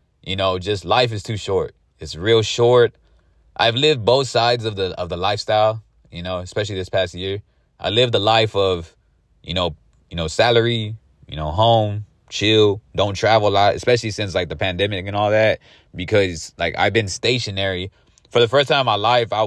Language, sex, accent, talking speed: English, male, American, 195 wpm